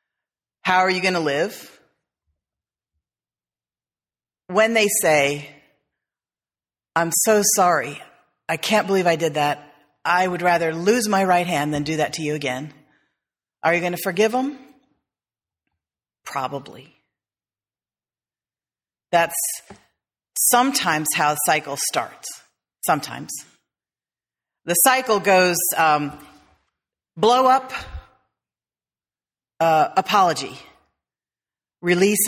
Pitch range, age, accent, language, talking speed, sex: 150-190 Hz, 40-59, American, English, 100 wpm, female